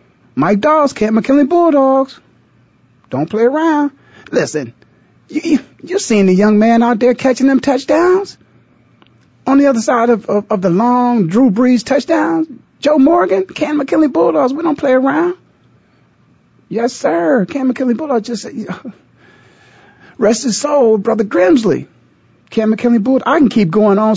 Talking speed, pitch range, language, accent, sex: 155 wpm, 210-285 Hz, English, American, male